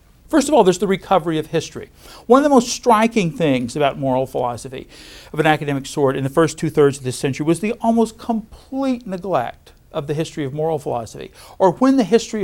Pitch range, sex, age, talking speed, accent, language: 140-195 Hz, male, 60-79, 210 wpm, American, English